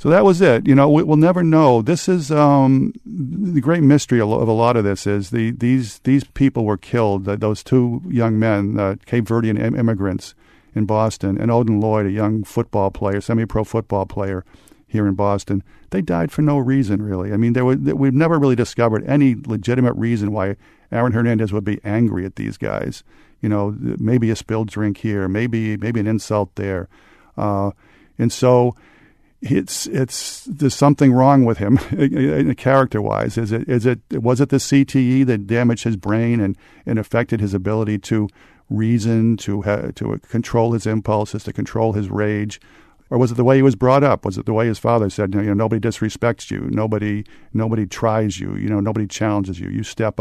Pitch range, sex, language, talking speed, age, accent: 105-125 Hz, male, English, 190 wpm, 50-69, American